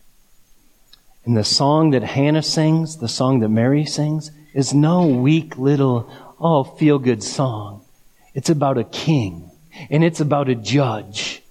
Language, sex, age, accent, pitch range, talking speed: English, male, 40-59, American, 115-145 Hz, 140 wpm